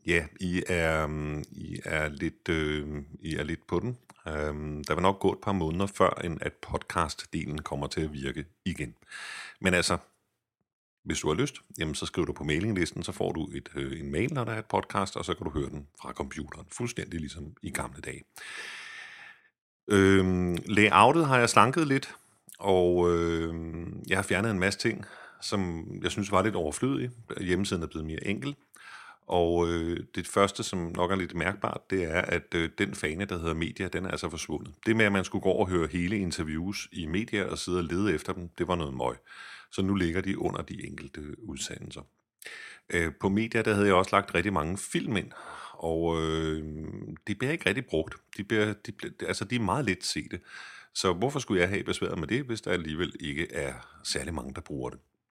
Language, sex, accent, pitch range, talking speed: Danish, male, native, 80-105 Hz, 195 wpm